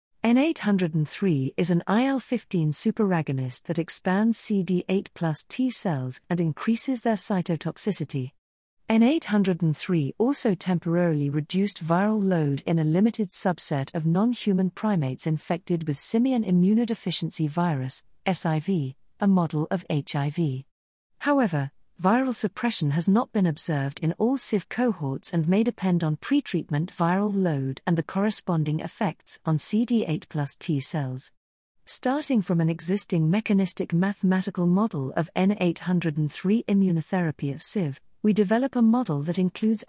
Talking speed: 120 wpm